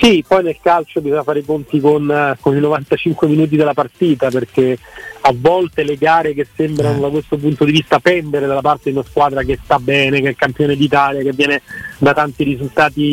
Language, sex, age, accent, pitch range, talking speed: Italian, male, 30-49, native, 135-155 Hz, 210 wpm